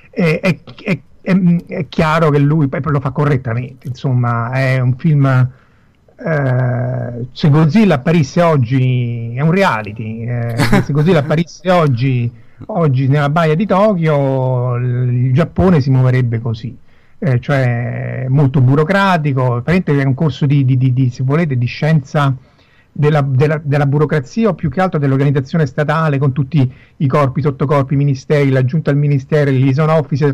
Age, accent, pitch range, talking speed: 50-69, native, 130-160 Hz, 150 wpm